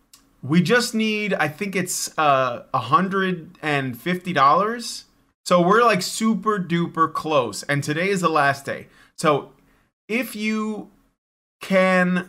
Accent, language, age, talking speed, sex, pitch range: American, English, 30-49, 110 wpm, male, 135-180 Hz